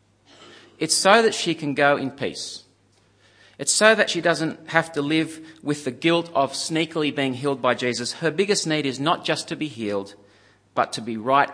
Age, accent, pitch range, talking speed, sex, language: 40-59, Australian, 105-160 Hz, 200 wpm, male, English